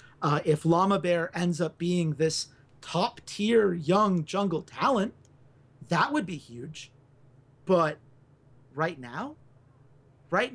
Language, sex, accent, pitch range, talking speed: English, male, American, 135-190 Hz, 120 wpm